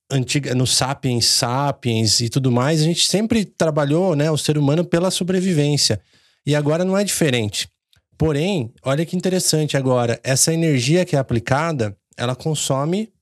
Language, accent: Portuguese, Brazilian